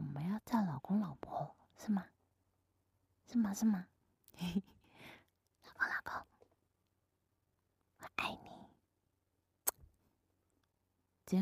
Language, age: Chinese, 20-39